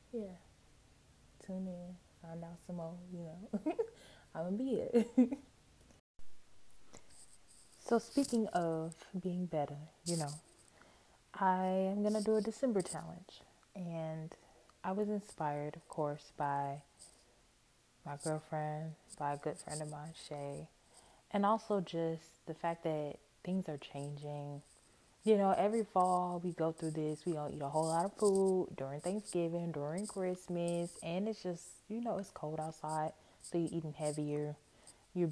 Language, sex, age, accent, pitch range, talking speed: English, female, 20-39, American, 150-185 Hz, 145 wpm